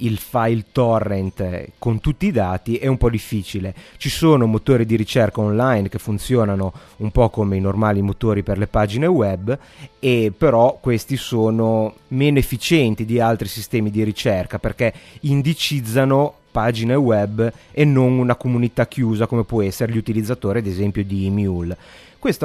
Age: 30-49